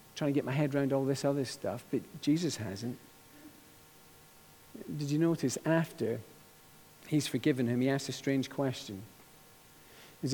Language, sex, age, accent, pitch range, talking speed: English, male, 50-69, British, 135-170 Hz, 150 wpm